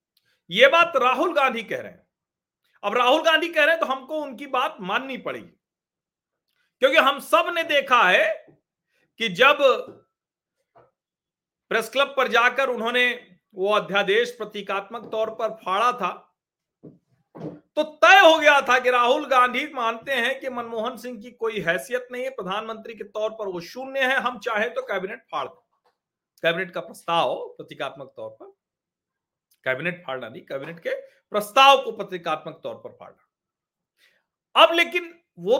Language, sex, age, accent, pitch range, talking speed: Hindi, male, 40-59, native, 220-290 Hz, 150 wpm